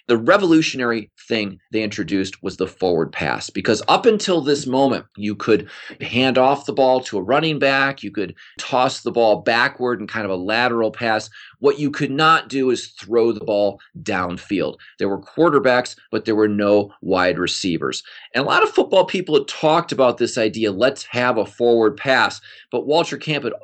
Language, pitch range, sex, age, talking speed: English, 105-135 Hz, male, 30-49, 190 wpm